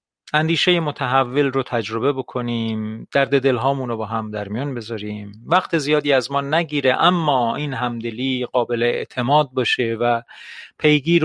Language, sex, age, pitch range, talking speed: Persian, male, 40-59, 110-145 Hz, 130 wpm